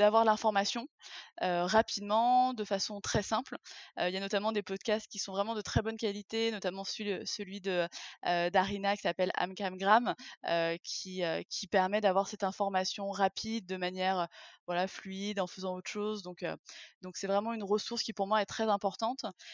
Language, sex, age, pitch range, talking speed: French, female, 20-39, 185-215 Hz, 190 wpm